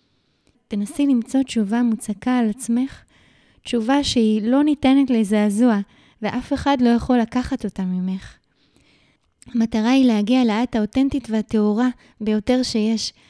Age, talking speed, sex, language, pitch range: 20-39, 115 wpm, female, Hebrew, 220-265 Hz